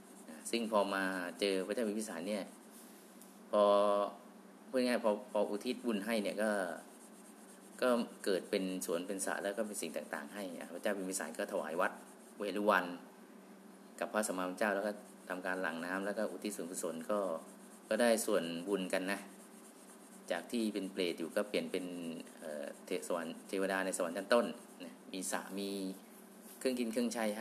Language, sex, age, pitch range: Thai, male, 20-39, 95-140 Hz